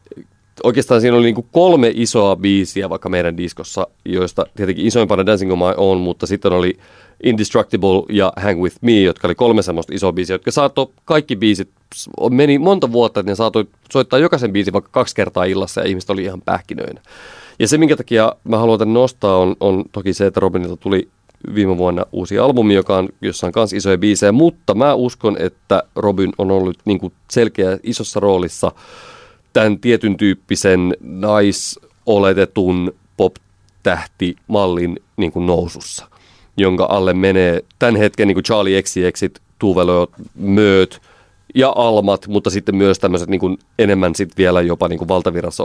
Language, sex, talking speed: Finnish, male, 155 wpm